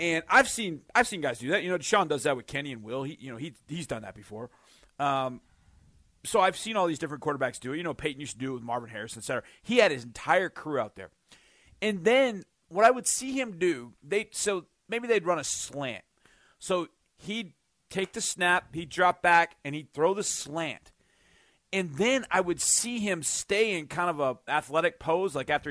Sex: male